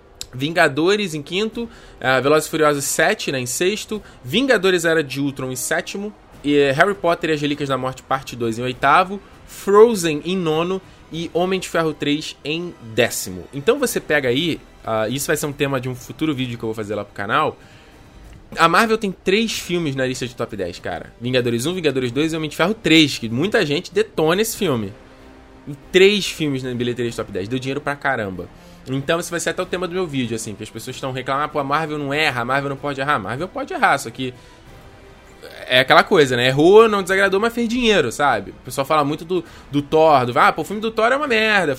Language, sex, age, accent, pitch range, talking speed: Portuguese, male, 20-39, Brazilian, 130-185 Hz, 225 wpm